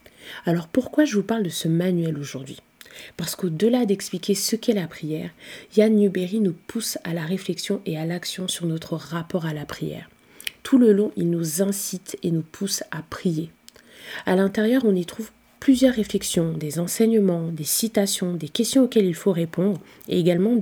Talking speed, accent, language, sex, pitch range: 180 wpm, French, French, female, 170-210 Hz